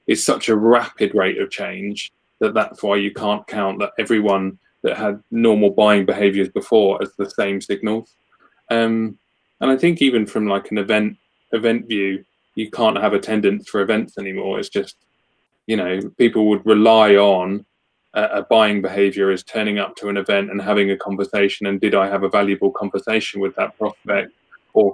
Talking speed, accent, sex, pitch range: 180 wpm, British, male, 100-110 Hz